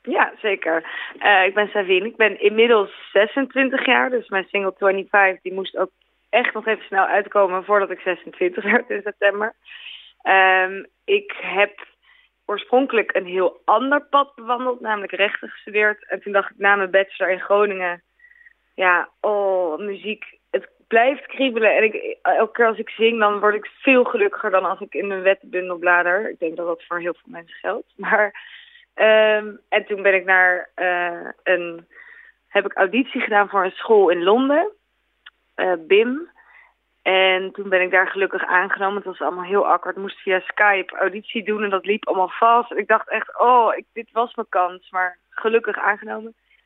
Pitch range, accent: 185-230 Hz, Dutch